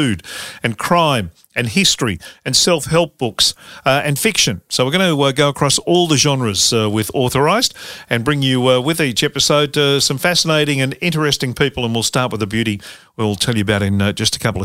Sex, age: male, 50-69